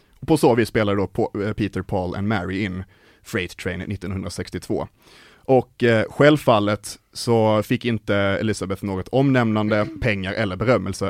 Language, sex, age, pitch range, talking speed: Swedish, male, 30-49, 100-120 Hz, 130 wpm